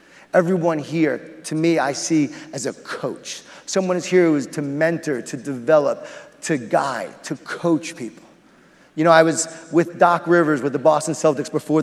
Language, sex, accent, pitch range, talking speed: English, male, American, 155-205 Hz, 180 wpm